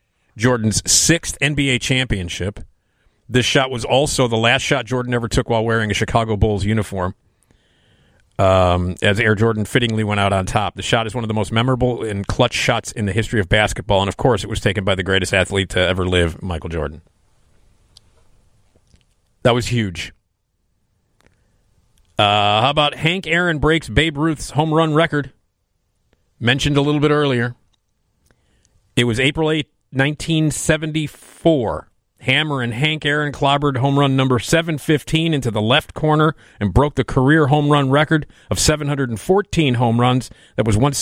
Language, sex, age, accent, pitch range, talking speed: English, male, 40-59, American, 105-140 Hz, 165 wpm